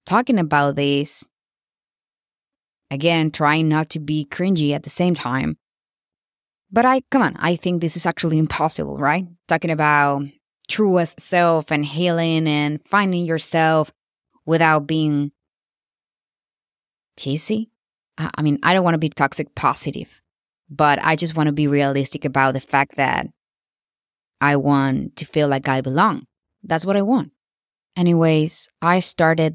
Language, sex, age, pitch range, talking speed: English, female, 20-39, 145-180 Hz, 145 wpm